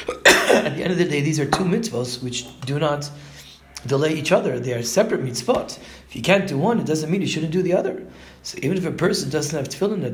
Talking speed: 250 wpm